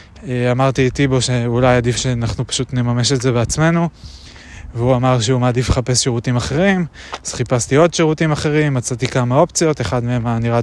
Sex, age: male, 20-39